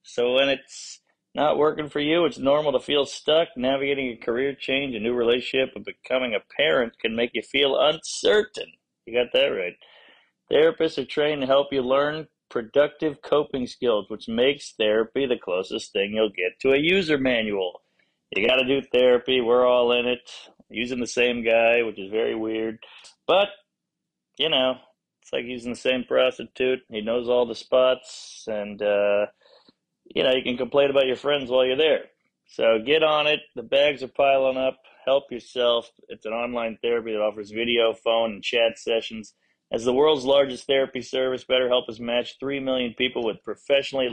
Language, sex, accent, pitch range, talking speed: English, male, American, 120-145 Hz, 180 wpm